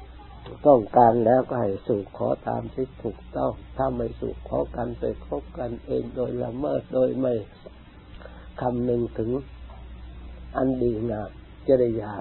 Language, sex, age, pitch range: Thai, male, 60-79, 100-130 Hz